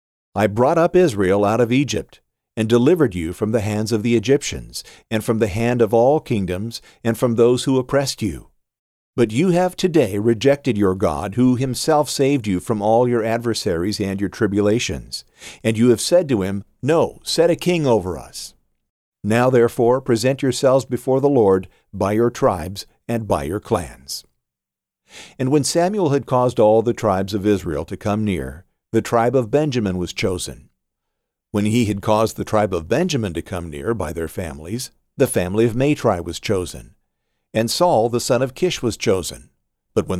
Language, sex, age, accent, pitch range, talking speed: English, male, 50-69, American, 100-125 Hz, 180 wpm